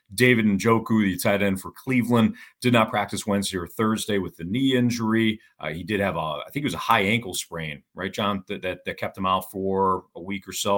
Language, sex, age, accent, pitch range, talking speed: English, male, 40-59, American, 90-105 Hz, 240 wpm